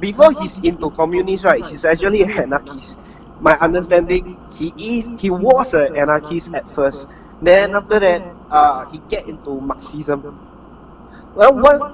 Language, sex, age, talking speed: English, male, 30-49, 140 wpm